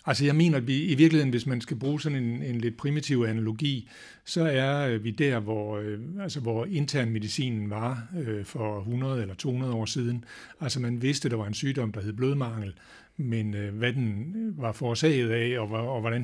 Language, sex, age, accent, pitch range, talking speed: Danish, male, 60-79, native, 110-135 Hz, 190 wpm